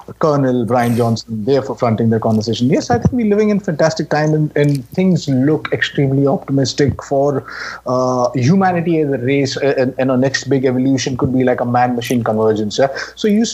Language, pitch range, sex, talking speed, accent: English, 135-185 Hz, male, 195 wpm, Indian